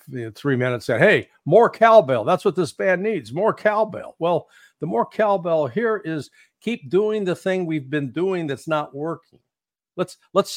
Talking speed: 180 wpm